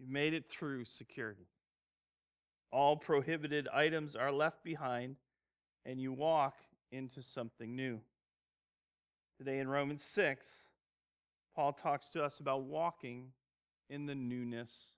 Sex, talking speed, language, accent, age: male, 120 wpm, English, American, 40-59